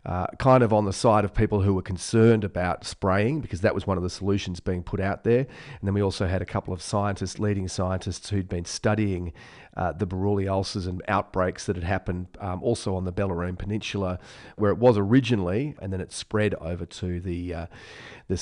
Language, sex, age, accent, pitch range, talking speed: English, male, 40-59, Australian, 90-105 Hz, 215 wpm